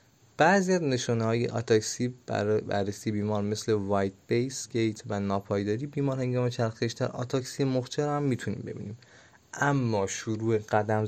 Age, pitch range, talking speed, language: 20-39, 105-125 Hz, 120 wpm, Persian